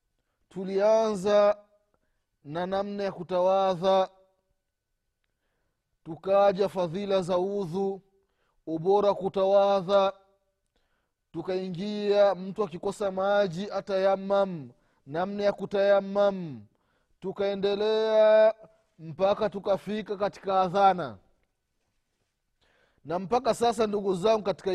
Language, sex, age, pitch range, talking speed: Swahili, male, 30-49, 175-225 Hz, 75 wpm